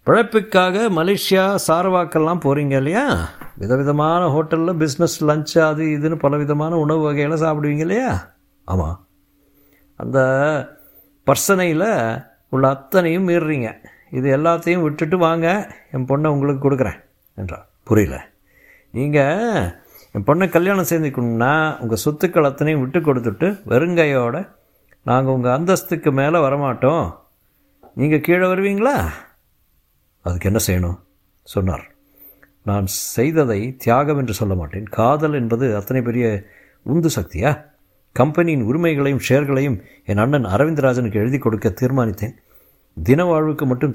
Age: 60-79